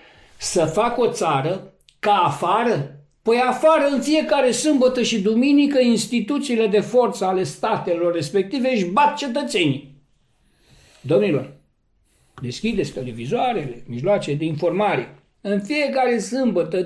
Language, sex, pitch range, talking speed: Romanian, male, 185-255 Hz, 110 wpm